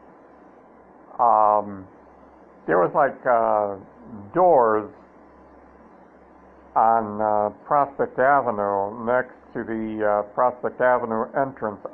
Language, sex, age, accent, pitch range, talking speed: English, male, 60-79, American, 105-125 Hz, 85 wpm